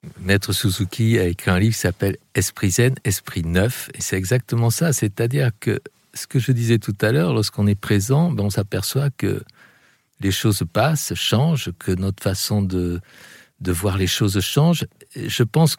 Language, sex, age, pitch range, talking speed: French, male, 50-69, 105-135 Hz, 190 wpm